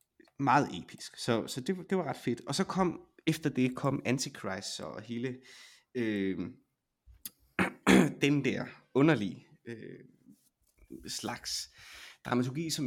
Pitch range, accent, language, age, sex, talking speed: 105-145 Hz, native, Danish, 30-49, male, 120 wpm